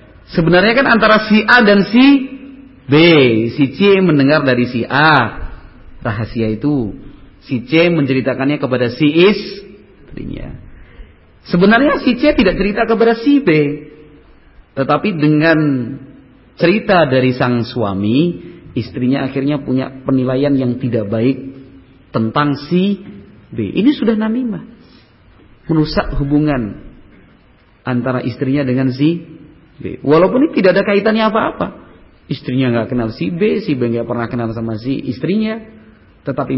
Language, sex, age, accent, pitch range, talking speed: Indonesian, male, 40-59, native, 115-165 Hz, 120 wpm